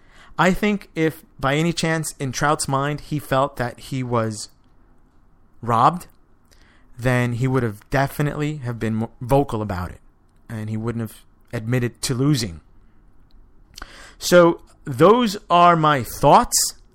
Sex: male